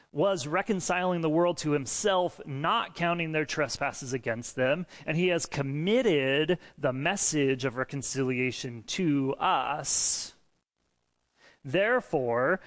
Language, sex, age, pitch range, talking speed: English, male, 30-49, 130-170 Hz, 110 wpm